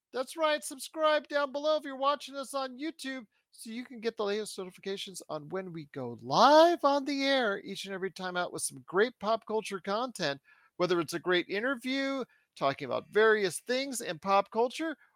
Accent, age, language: American, 40-59, English